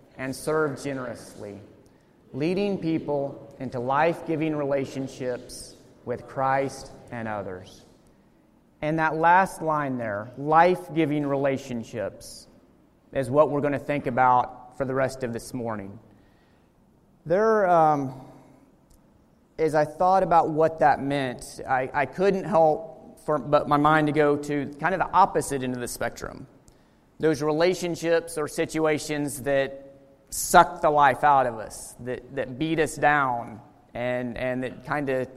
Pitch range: 125-155 Hz